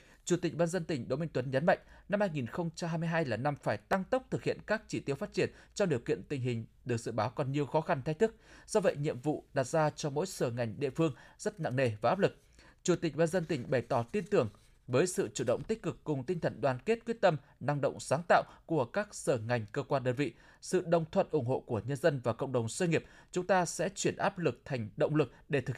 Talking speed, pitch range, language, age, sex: 265 wpm, 135-175 Hz, Vietnamese, 20-39, male